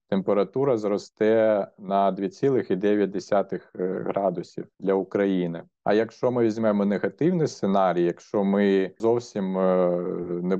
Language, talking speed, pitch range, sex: Ukrainian, 95 wpm, 95-110 Hz, male